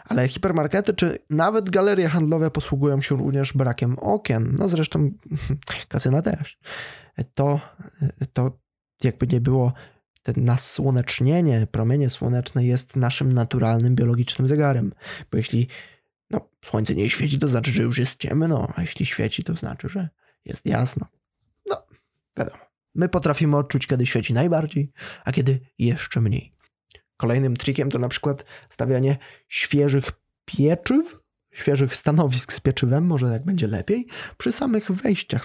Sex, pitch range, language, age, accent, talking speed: male, 125-155 Hz, Polish, 20-39, native, 130 wpm